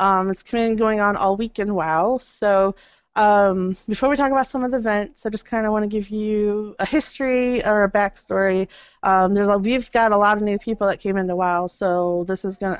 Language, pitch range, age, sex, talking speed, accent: English, 190-225 Hz, 30-49, female, 235 wpm, American